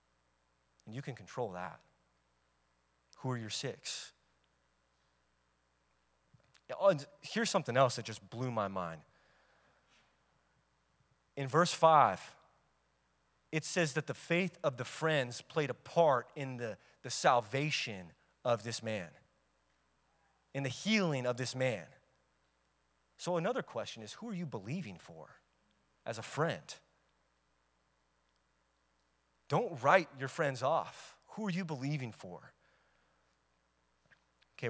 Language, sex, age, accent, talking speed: English, male, 30-49, American, 115 wpm